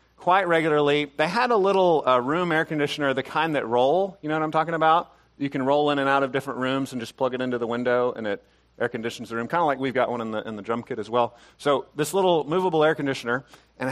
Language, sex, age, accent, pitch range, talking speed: English, male, 40-59, American, 120-150 Hz, 270 wpm